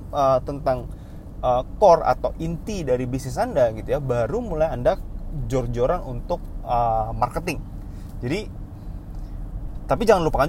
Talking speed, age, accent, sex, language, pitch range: 125 wpm, 20-39, native, male, Indonesian, 115-140 Hz